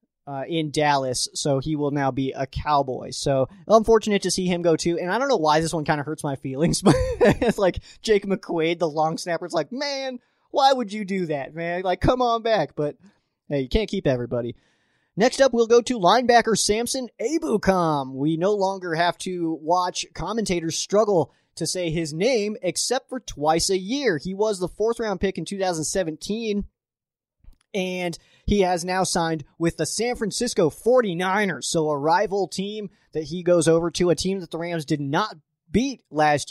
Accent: American